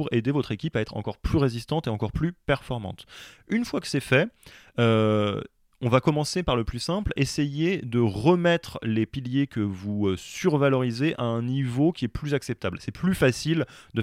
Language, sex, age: French, male, 20-39